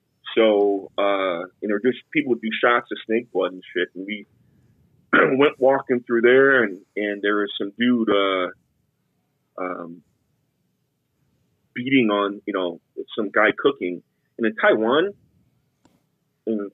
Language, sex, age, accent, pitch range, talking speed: English, male, 30-49, American, 95-125 Hz, 140 wpm